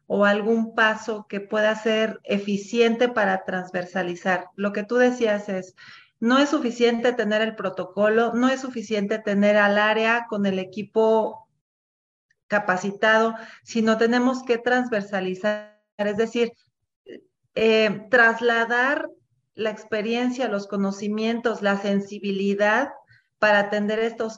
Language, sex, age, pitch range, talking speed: English, female, 40-59, 195-225 Hz, 115 wpm